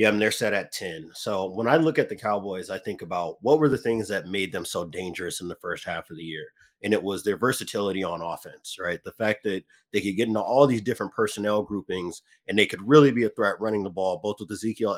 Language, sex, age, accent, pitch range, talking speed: English, male, 30-49, American, 95-120 Hz, 260 wpm